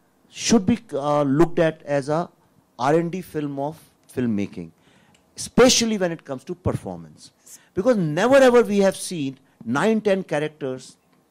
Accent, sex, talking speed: Indian, male, 140 wpm